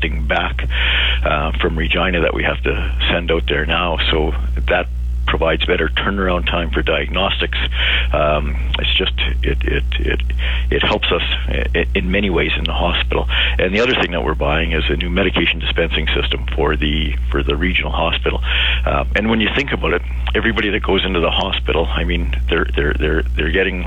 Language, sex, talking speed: English, male, 185 wpm